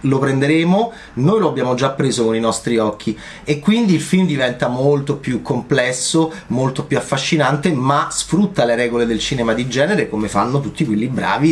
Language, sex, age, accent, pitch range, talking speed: Italian, male, 30-49, native, 120-175 Hz, 180 wpm